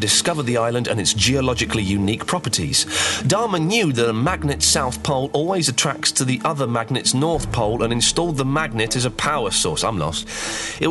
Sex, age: male, 30-49